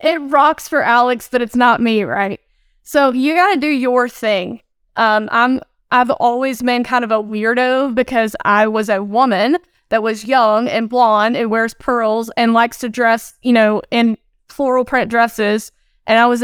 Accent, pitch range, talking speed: American, 220-265 Hz, 195 wpm